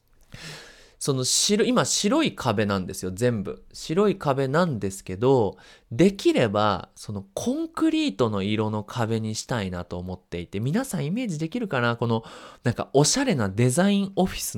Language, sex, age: Japanese, male, 20-39